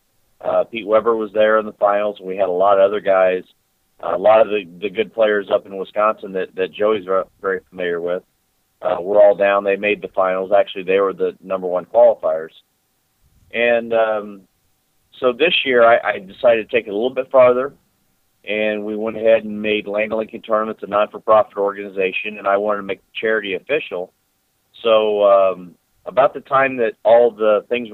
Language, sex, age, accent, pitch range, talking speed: English, male, 40-59, American, 95-115 Hz, 200 wpm